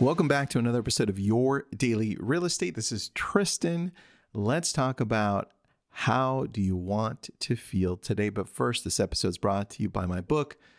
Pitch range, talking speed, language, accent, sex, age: 105-150 Hz, 190 wpm, English, American, male, 40-59